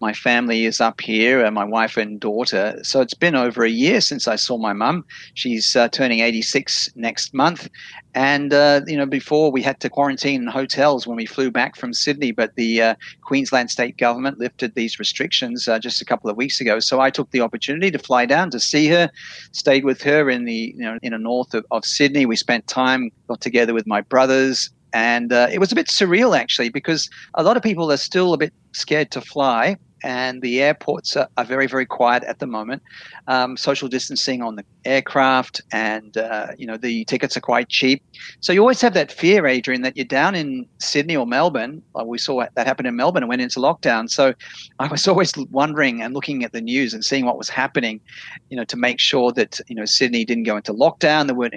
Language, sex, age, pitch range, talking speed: English, male, 40-59, 115-140 Hz, 220 wpm